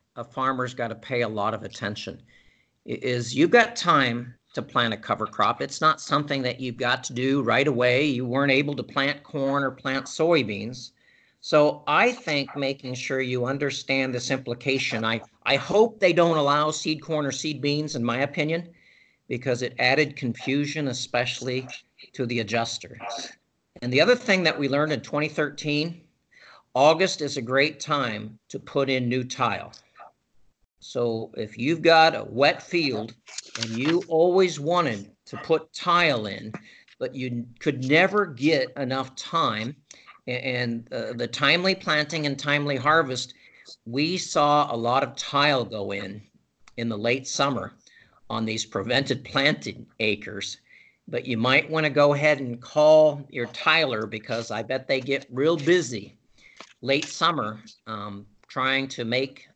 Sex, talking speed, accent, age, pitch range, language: male, 160 wpm, American, 50-69, 120-150 Hz, English